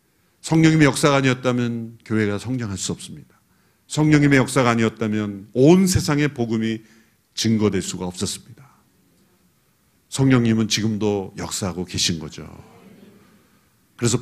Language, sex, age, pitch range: Korean, male, 50-69, 110-170 Hz